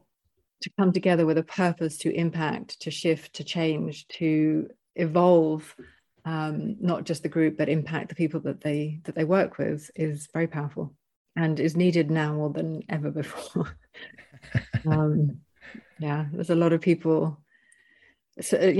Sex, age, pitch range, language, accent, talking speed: female, 30-49, 155-180 Hz, English, British, 155 wpm